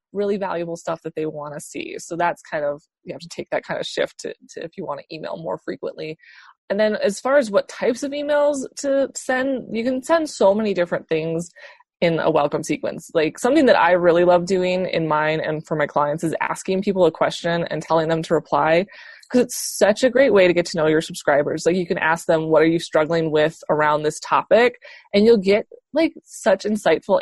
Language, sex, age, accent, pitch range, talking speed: English, female, 20-39, American, 160-235 Hz, 230 wpm